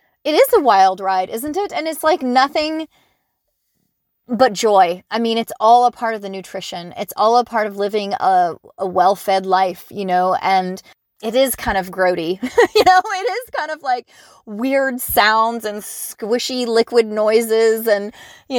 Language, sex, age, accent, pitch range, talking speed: English, female, 30-49, American, 205-295 Hz, 180 wpm